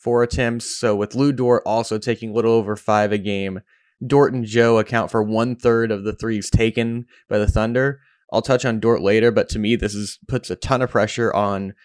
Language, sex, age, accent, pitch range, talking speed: English, male, 20-39, American, 105-125 Hz, 220 wpm